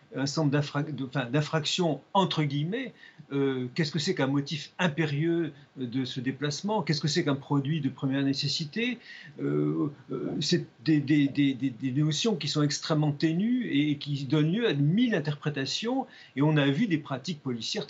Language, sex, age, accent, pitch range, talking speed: French, male, 50-69, French, 140-175 Hz, 175 wpm